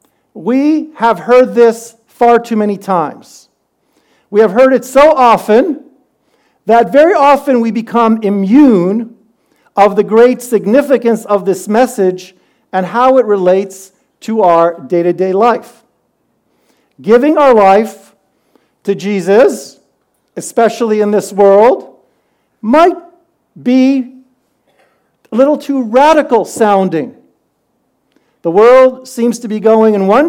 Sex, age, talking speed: male, 50-69, 115 wpm